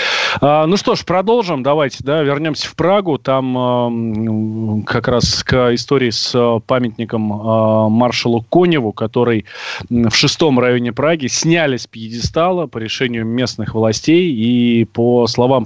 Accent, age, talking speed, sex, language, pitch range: native, 30-49, 135 wpm, male, Russian, 115-140 Hz